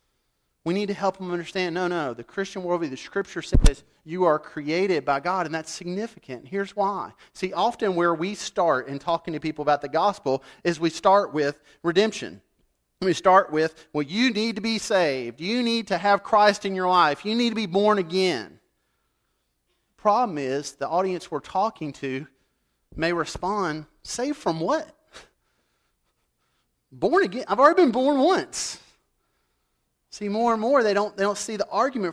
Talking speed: 175 wpm